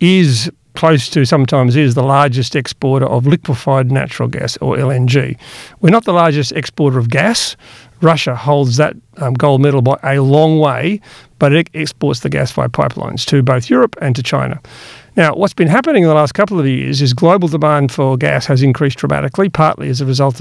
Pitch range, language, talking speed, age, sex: 130-160 Hz, English, 195 wpm, 50-69, male